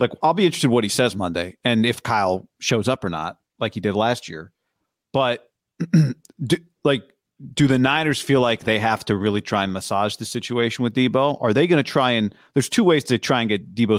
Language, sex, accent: English, male, American